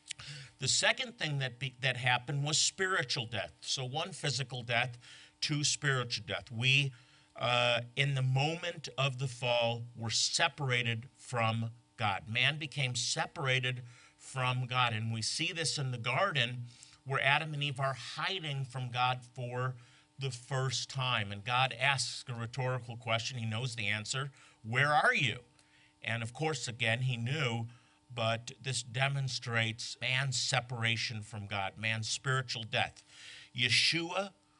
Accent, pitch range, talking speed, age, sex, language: American, 115-140 Hz, 140 wpm, 50-69, male, English